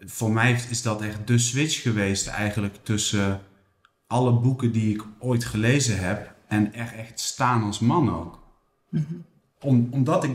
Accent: Dutch